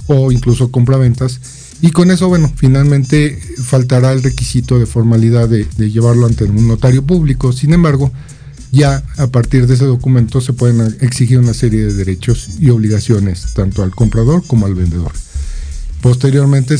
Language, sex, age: Spanish, male, 50-69